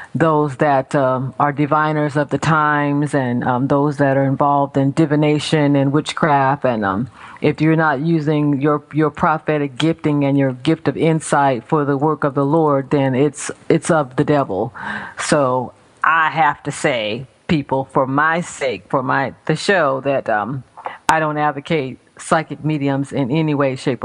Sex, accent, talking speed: female, American, 170 wpm